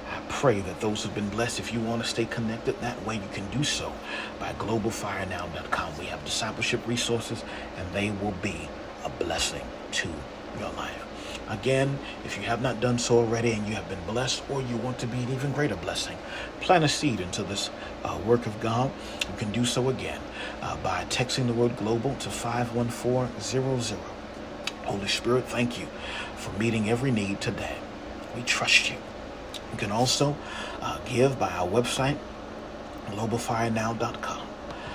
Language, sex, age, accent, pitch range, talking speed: English, male, 40-59, American, 105-125 Hz, 170 wpm